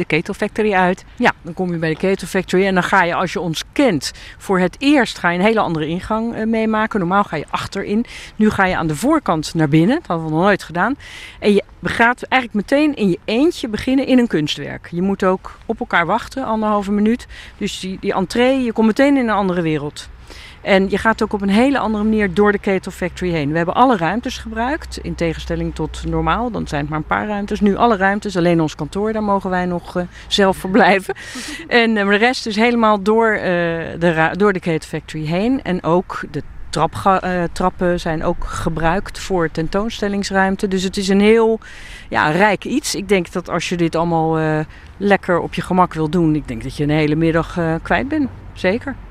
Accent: Dutch